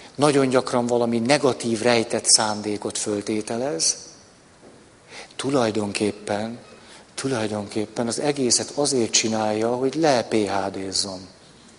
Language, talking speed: Hungarian, 75 wpm